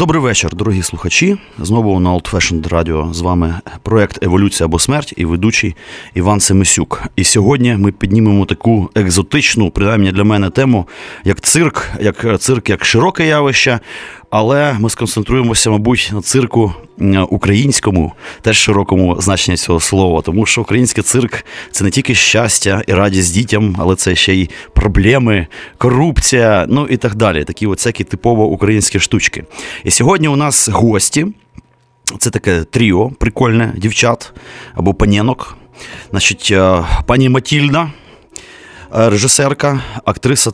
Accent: native